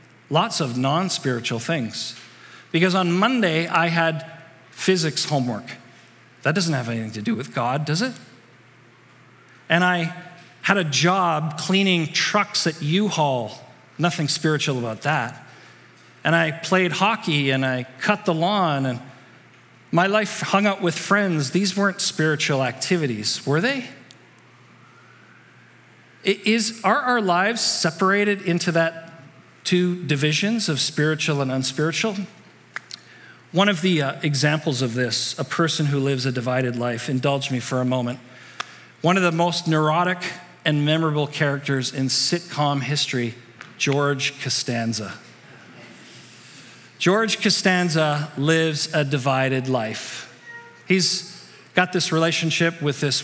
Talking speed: 125 wpm